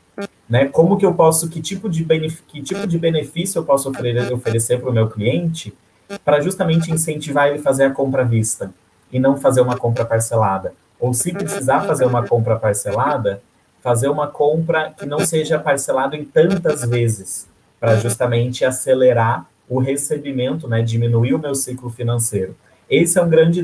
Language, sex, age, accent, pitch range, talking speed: Portuguese, male, 30-49, Brazilian, 115-160 Hz, 170 wpm